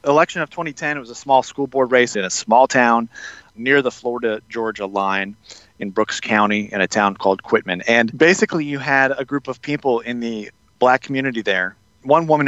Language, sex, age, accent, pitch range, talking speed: English, male, 30-49, American, 115-145 Hz, 195 wpm